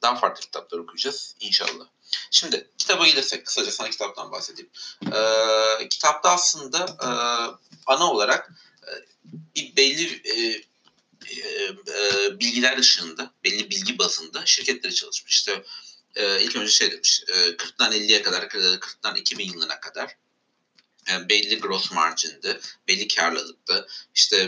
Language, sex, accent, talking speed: Turkish, male, native, 120 wpm